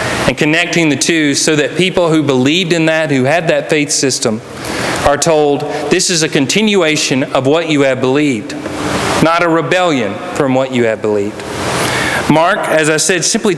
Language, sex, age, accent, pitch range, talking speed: English, male, 40-59, American, 145-170 Hz, 175 wpm